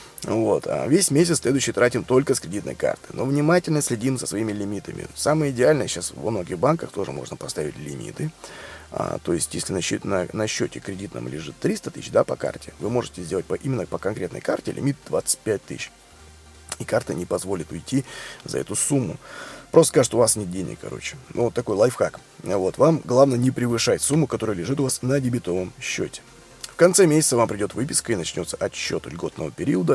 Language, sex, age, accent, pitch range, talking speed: Russian, male, 20-39, native, 110-150 Hz, 190 wpm